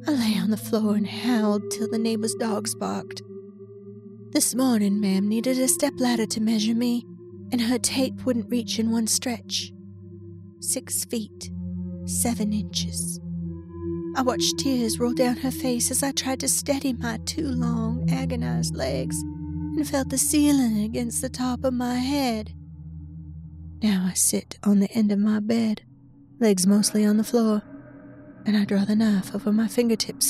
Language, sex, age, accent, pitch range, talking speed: English, female, 30-49, American, 180-240 Hz, 160 wpm